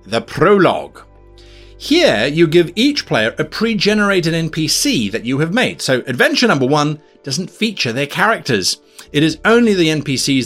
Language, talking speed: English, 155 wpm